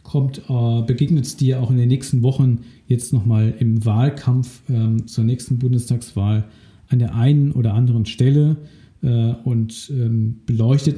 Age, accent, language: 50-69, German, German